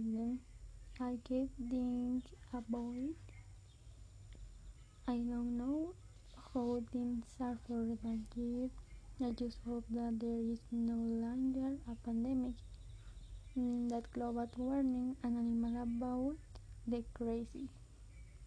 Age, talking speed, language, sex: 20-39, 105 wpm, Spanish, female